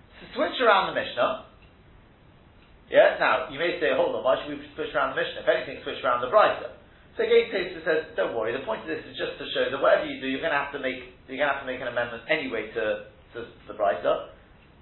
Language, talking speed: English, 260 wpm